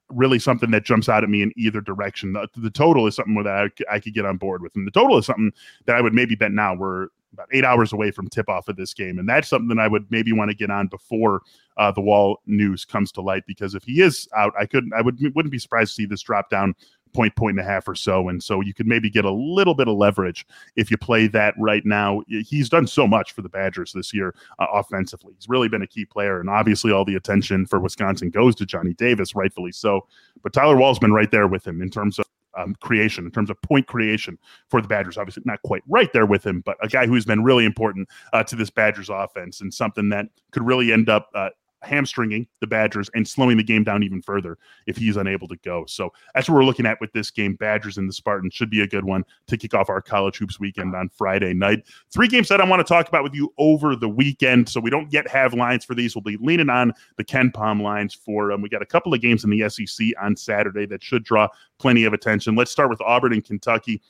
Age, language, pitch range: 30-49, English, 100-120 Hz